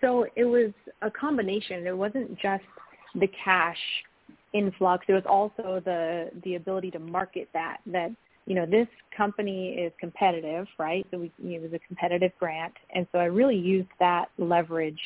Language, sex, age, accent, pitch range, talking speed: English, female, 30-49, American, 175-195 Hz, 175 wpm